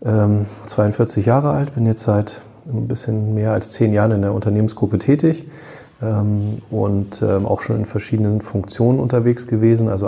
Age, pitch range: 30-49, 100-115 Hz